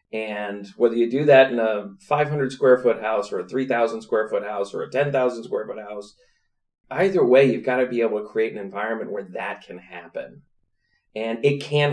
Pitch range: 120-175 Hz